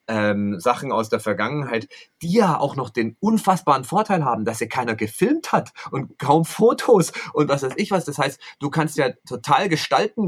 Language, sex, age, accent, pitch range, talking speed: German, male, 30-49, German, 115-160 Hz, 195 wpm